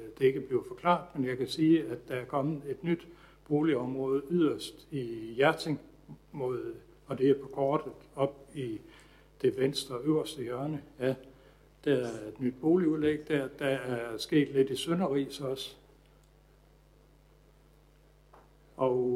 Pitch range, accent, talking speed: 120-145 Hz, native, 135 wpm